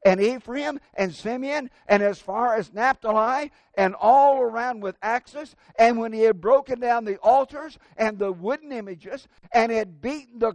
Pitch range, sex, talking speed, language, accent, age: 210-275 Hz, male, 170 wpm, English, American, 60-79